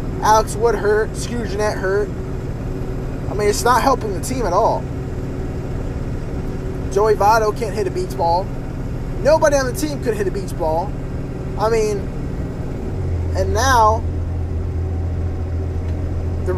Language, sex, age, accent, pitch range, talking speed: English, male, 20-39, American, 80-95 Hz, 125 wpm